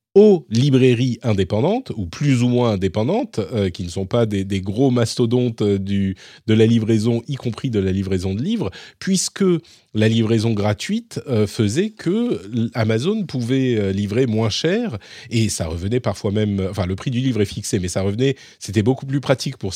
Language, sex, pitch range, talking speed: French, male, 95-130 Hz, 180 wpm